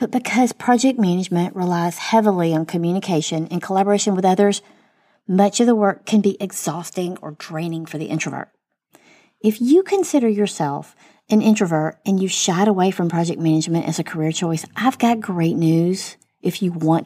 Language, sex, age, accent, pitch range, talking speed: English, female, 40-59, American, 170-215 Hz, 170 wpm